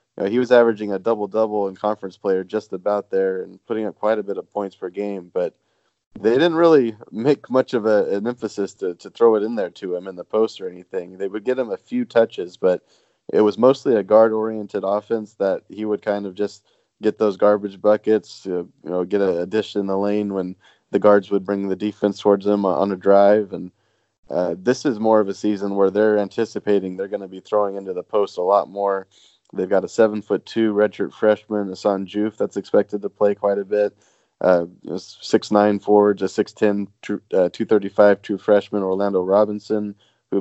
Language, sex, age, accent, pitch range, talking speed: English, male, 20-39, American, 95-110 Hz, 210 wpm